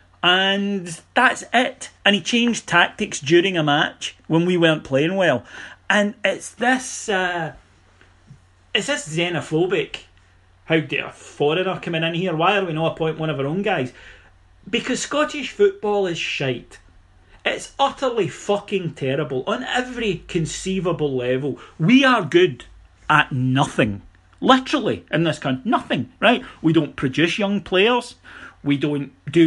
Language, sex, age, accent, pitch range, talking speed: English, male, 40-59, British, 140-195 Hz, 145 wpm